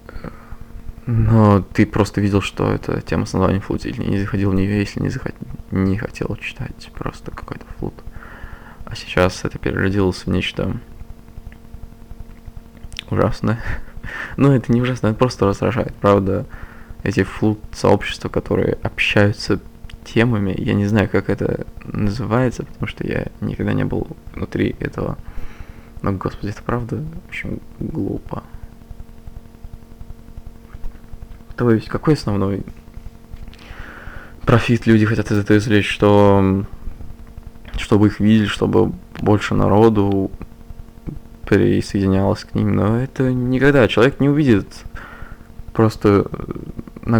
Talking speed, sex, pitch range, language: 115 wpm, male, 100-115 Hz, Russian